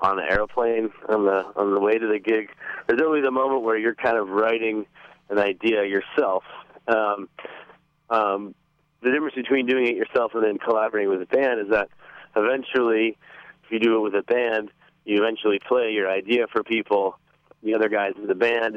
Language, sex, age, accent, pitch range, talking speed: English, male, 30-49, American, 105-120 Hz, 190 wpm